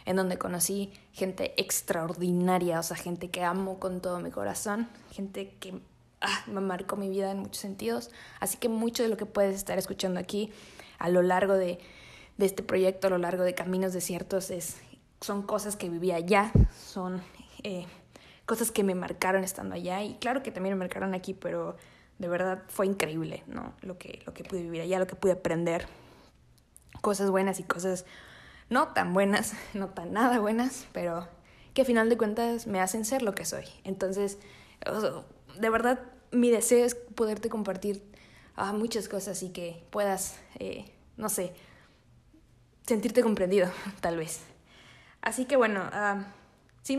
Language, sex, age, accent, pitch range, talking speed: Spanish, female, 20-39, Mexican, 180-215 Hz, 170 wpm